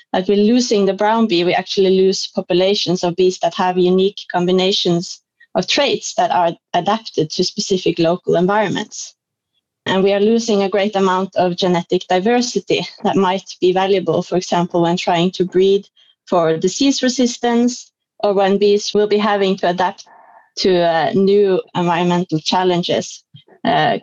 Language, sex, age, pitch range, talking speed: English, female, 30-49, 180-215 Hz, 155 wpm